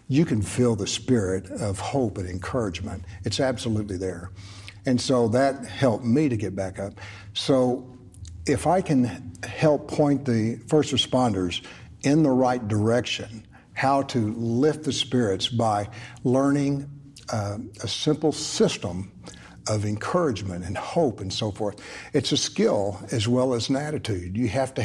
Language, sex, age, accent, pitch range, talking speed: English, male, 60-79, American, 105-130 Hz, 150 wpm